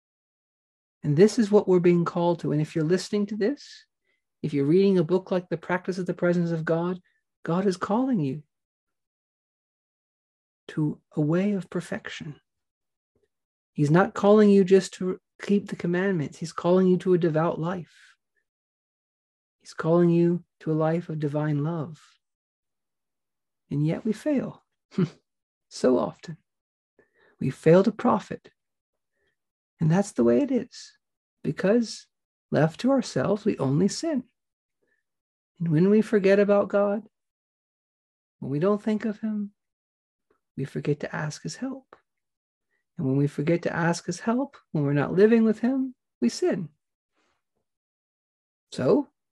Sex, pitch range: male, 160-220 Hz